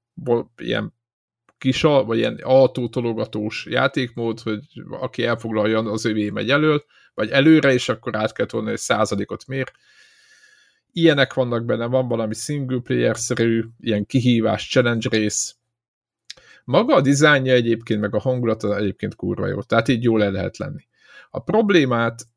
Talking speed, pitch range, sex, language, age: 135 wpm, 110-135 Hz, male, Hungarian, 50-69